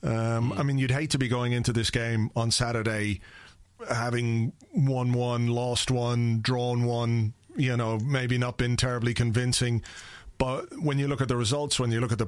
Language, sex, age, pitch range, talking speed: English, male, 40-59, 115-140 Hz, 190 wpm